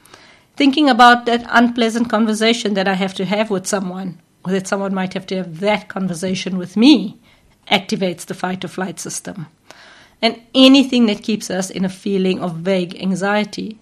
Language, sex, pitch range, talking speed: English, female, 185-225 Hz, 165 wpm